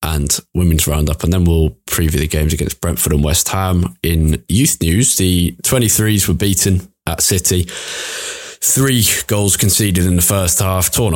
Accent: British